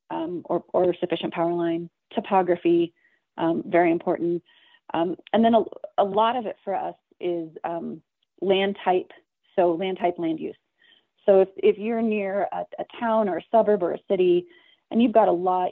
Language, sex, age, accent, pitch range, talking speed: English, female, 30-49, American, 175-260 Hz, 185 wpm